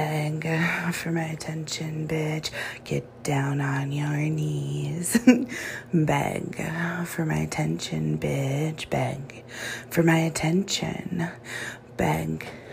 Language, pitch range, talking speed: English, 125-165 Hz, 75 wpm